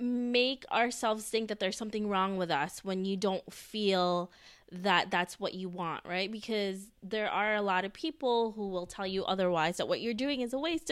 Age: 20-39